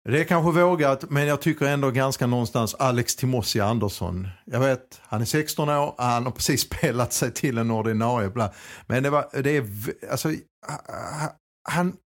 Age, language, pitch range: 50-69, Swedish, 105-140 Hz